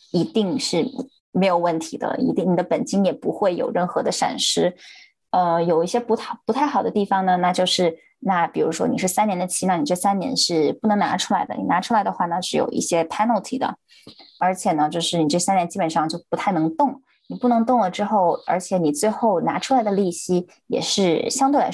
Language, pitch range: Chinese, 170-245 Hz